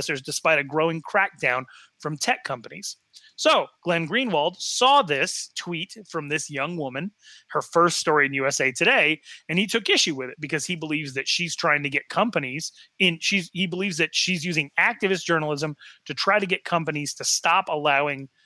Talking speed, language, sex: 180 wpm, English, male